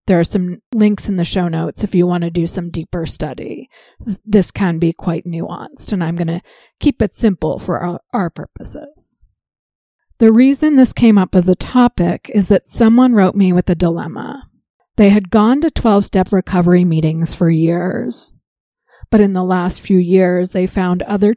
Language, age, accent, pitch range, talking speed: English, 40-59, American, 175-215 Hz, 185 wpm